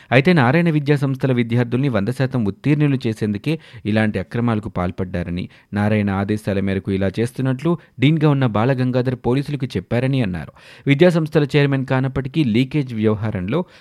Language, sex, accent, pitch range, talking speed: Telugu, male, native, 105-140 Hz, 120 wpm